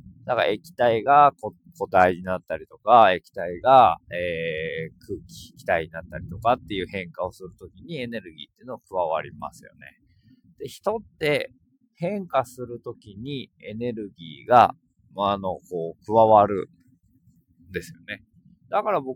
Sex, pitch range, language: male, 95-145 Hz, Japanese